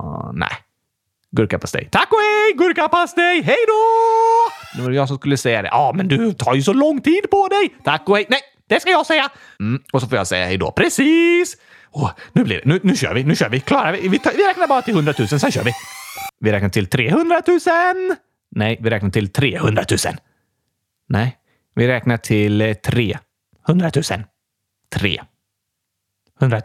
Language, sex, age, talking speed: Swedish, male, 30-49, 185 wpm